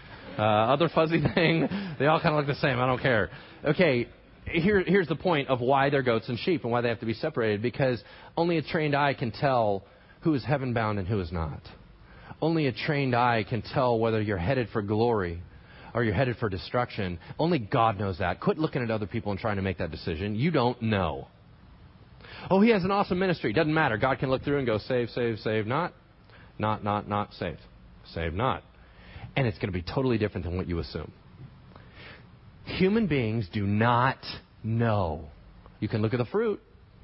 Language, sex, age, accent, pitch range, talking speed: English, male, 30-49, American, 110-180 Hz, 205 wpm